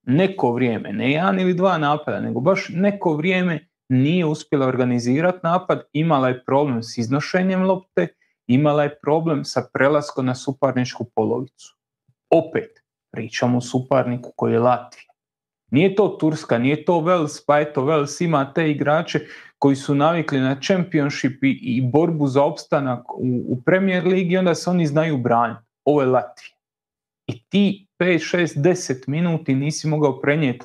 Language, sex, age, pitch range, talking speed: Croatian, male, 30-49, 130-175 Hz, 155 wpm